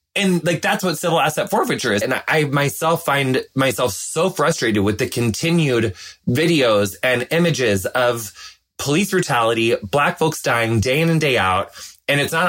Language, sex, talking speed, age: English, male, 175 wpm, 20-39